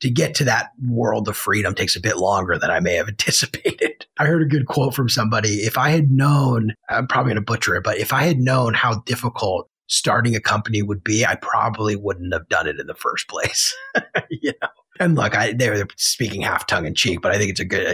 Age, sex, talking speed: 30-49, male, 240 wpm